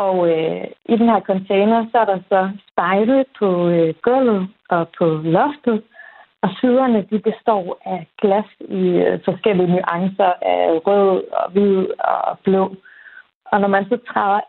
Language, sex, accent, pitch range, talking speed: Danish, female, native, 175-225 Hz, 155 wpm